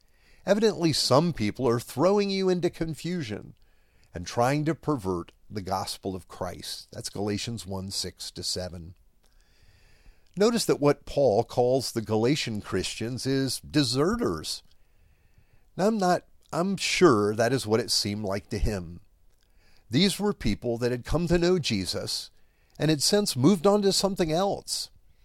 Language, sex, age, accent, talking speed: English, male, 50-69, American, 145 wpm